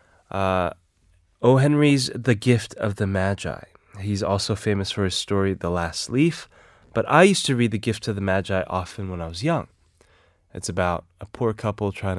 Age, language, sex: 20-39, Korean, male